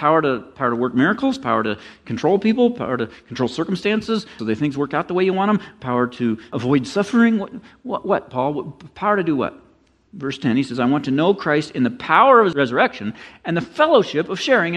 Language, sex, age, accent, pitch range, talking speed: English, male, 50-69, American, 105-160 Hz, 225 wpm